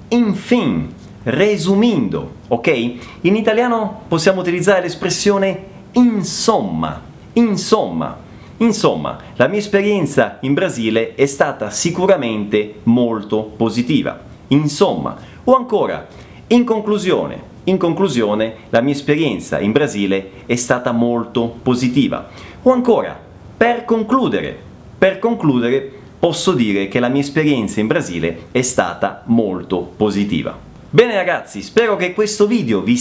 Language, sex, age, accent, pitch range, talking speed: Italian, male, 30-49, native, 135-215 Hz, 115 wpm